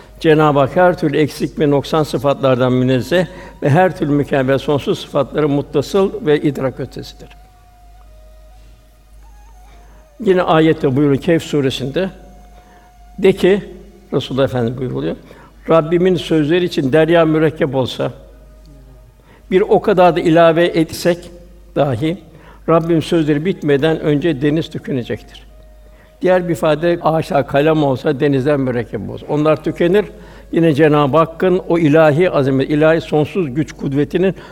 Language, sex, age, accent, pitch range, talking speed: Turkish, male, 60-79, native, 140-175 Hz, 120 wpm